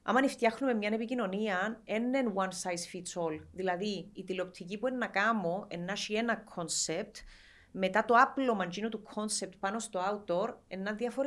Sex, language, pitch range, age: female, Greek, 190-240 Hz, 30-49